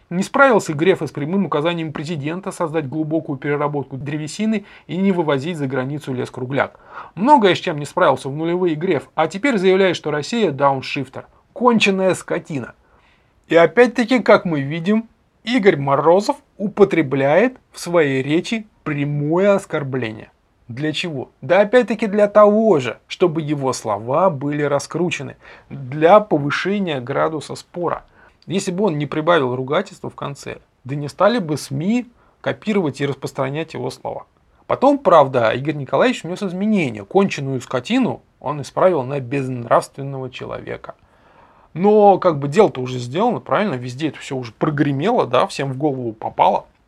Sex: male